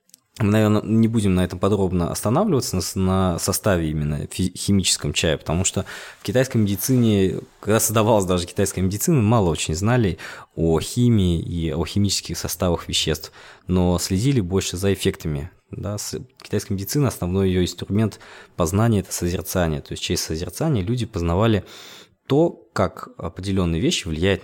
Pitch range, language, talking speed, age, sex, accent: 85-110 Hz, Russian, 140 wpm, 20-39, male, native